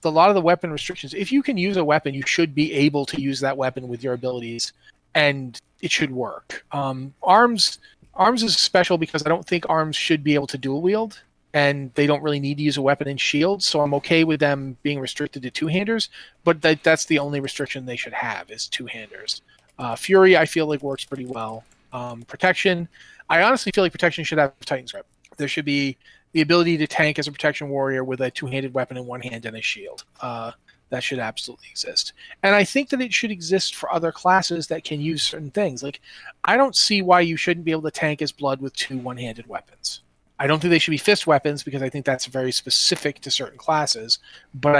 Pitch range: 135-170 Hz